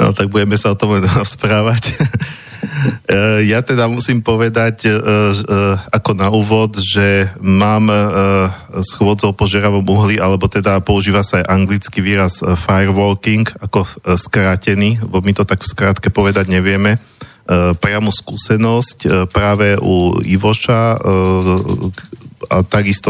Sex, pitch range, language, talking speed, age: male, 95-110 Hz, Slovak, 115 wpm, 40-59